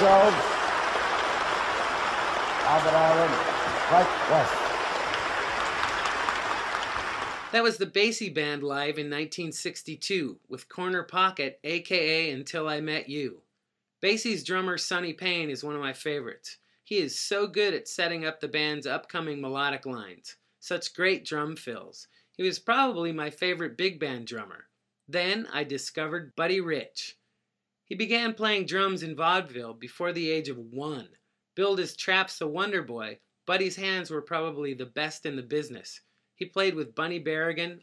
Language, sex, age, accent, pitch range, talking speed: English, male, 30-49, American, 150-185 Hz, 135 wpm